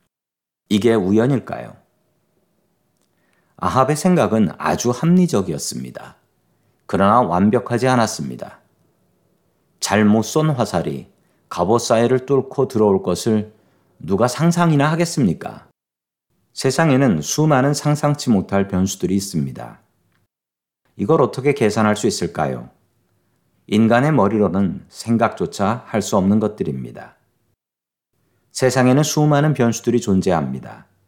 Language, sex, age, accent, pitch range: Korean, male, 40-59, native, 95-130 Hz